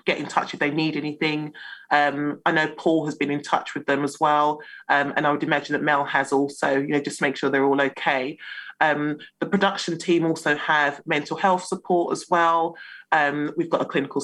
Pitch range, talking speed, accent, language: 145-180 Hz, 220 wpm, British, English